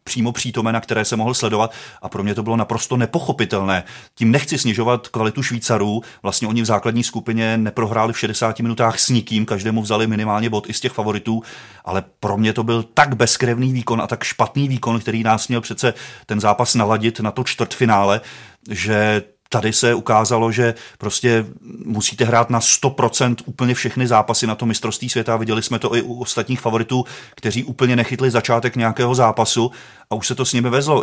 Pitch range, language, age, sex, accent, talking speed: 110-120 Hz, Czech, 30-49, male, native, 190 wpm